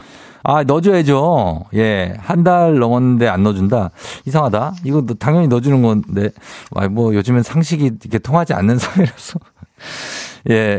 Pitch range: 105-145 Hz